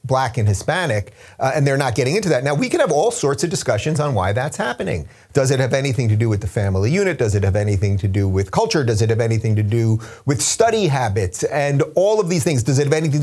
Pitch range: 115-155 Hz